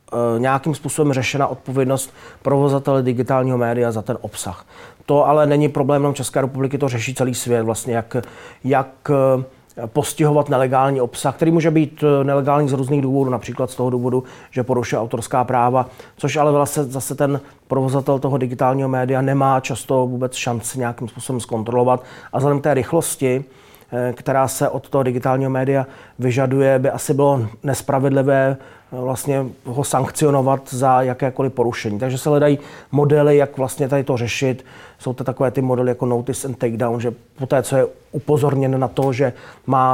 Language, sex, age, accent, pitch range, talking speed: Czech, male, 30-49, native, 125-140 Hz, 160 wpm